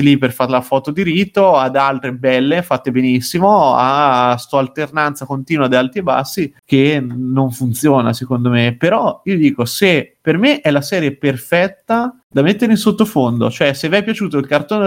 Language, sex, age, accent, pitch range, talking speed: Italian, male, 30-49, native, 130-175 Hz, 185 wpm